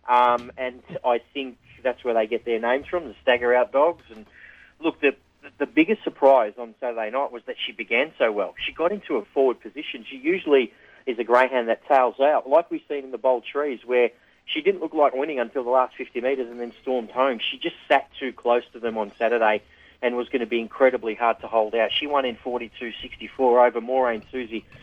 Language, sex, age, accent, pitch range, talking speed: English, male, 40-59, Australian, 115-135 Hz, 220 wpm